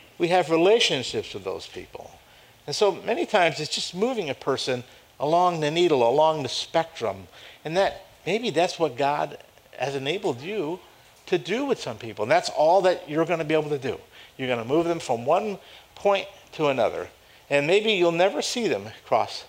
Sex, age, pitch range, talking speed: male, 50-69, 130-185 Hz, 195 wpm